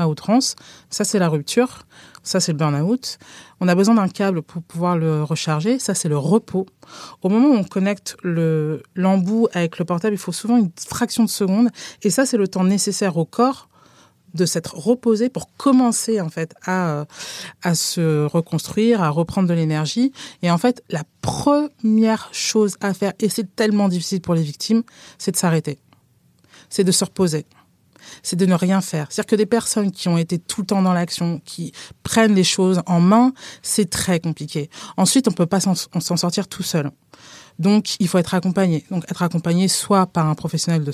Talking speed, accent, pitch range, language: 200 wpm, French, 165-210 Hz, French